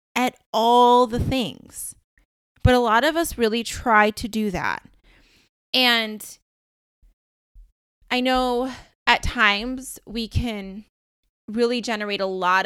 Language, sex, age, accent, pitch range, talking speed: English, female, 20-39, American, 190-230 Hz, 120 wpm